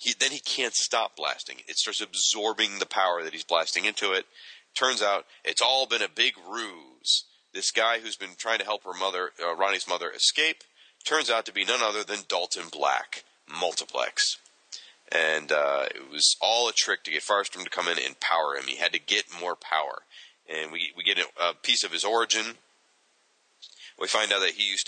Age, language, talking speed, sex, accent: 30-49, English, 205 wpm, male, American